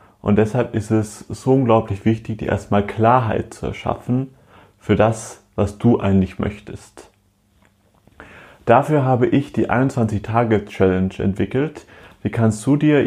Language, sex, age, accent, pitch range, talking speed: German, male, 30-49, German, 100-130 Hz, 130 wpm